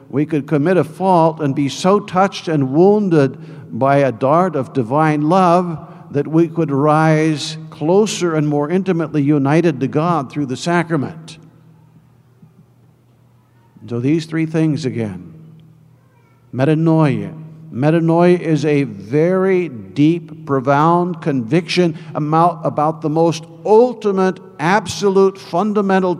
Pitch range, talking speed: 150-190 Hz, 115 wpm